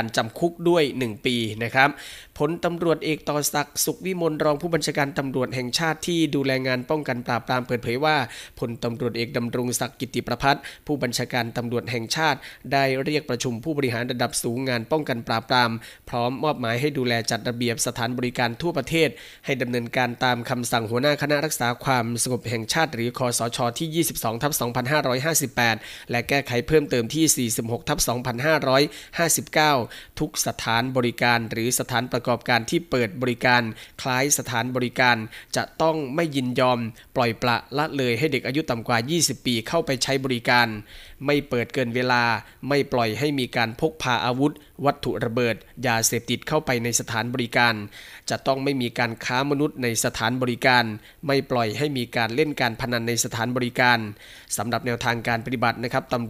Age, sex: 20-39, male